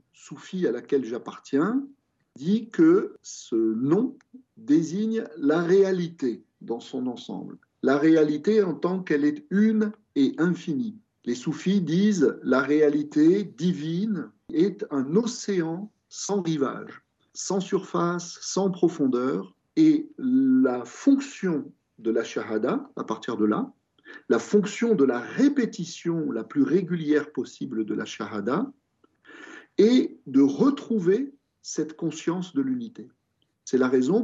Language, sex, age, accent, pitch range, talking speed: French, male, 50-69, French, 150-245 Hz, 125 wpm